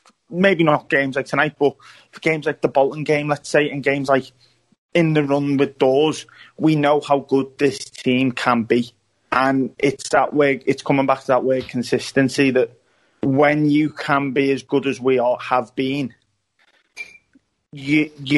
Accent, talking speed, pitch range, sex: British, 175 wpm, 130-145 Hz, male